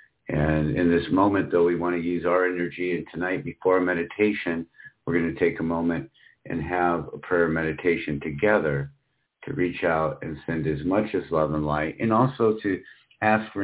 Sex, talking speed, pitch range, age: male, 190 wpm, 80-95 Hz, 50-69